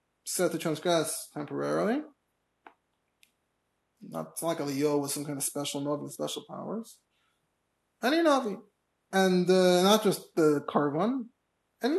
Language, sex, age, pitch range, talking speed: English, male, 30-49, 160-230 Hz, 130 wpm